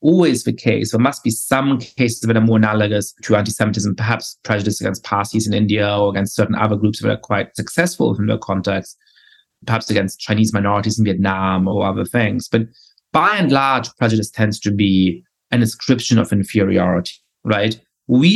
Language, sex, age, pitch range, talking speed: English, male, 30-49, 105-125 Hz, 180 wpm